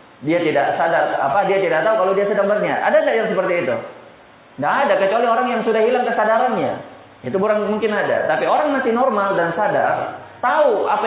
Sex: male